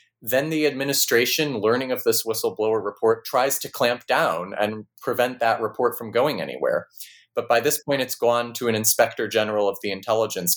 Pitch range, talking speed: 110-135 Hz, 180 wpm